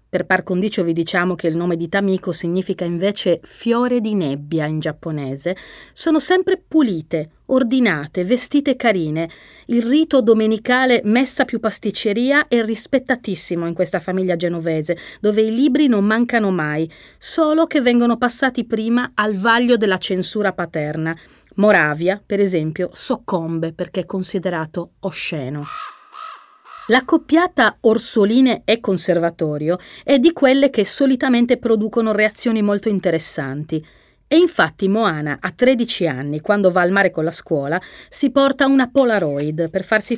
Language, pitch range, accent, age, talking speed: Italian, 170-245 Hz, native, 30-49, 135 wpm